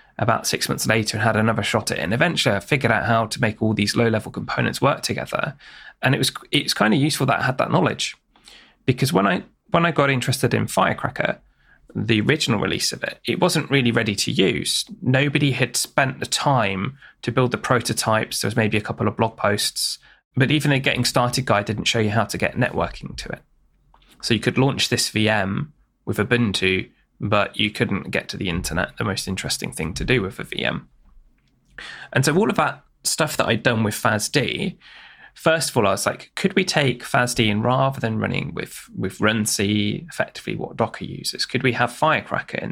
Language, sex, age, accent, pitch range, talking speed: English, male, 20-39, British, 105-130 Hz, 210 wpm